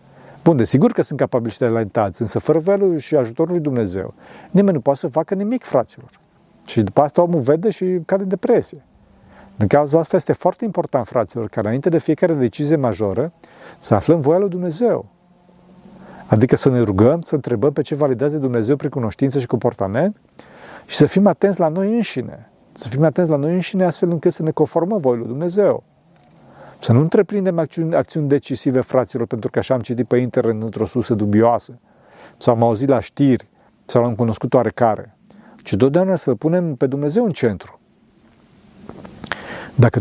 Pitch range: 125-170 Hz